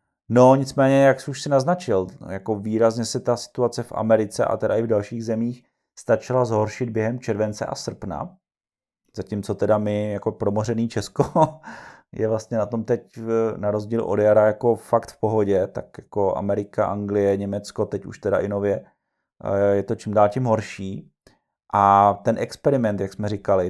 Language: Czech